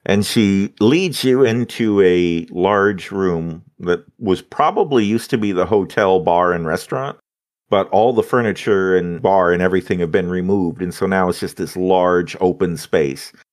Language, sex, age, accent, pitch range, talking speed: English, male, 50-69, American, 90-115 Hz, 175 wpm